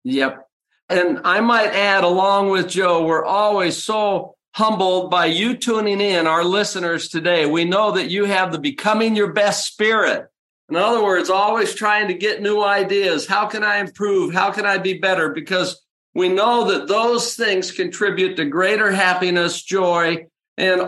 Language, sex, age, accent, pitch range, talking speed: English, male, 50-69, American, 175-210 Hz, 170 wpm